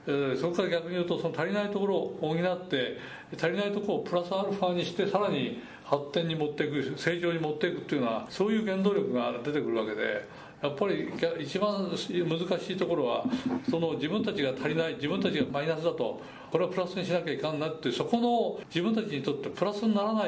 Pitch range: 145-205 Hz